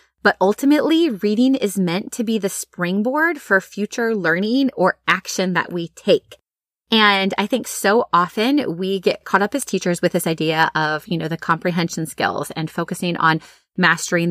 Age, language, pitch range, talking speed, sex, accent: 20-39, English, 170-225 Hz, 170 wpm, female, American